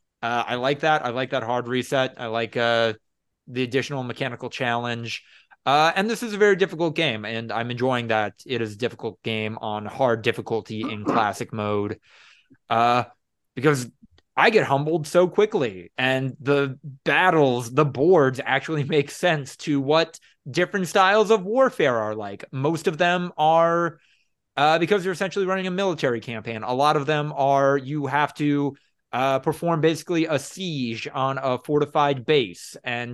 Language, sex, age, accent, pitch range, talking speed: English, male, 20-39, American, 125-175 Hz, 165 wpm